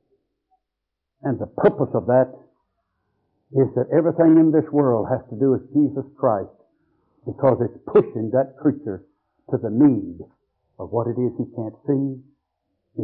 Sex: male